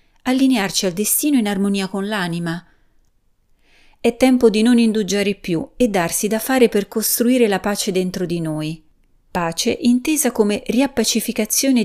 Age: 30-49